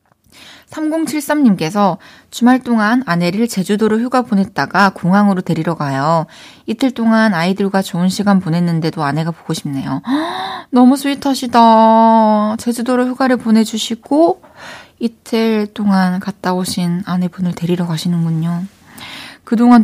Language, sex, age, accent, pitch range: Korean, female, 20-39, native, 170-235 Hz